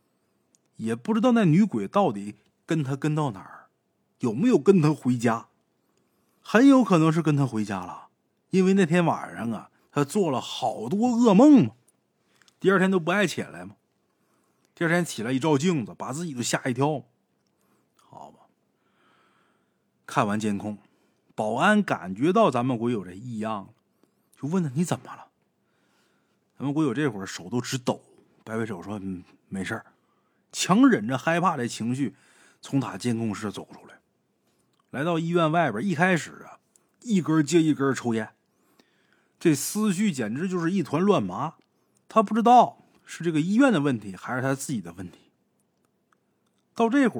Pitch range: 120-190 Hz